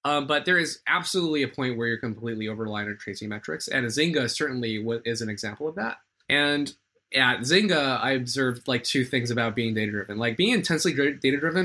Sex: male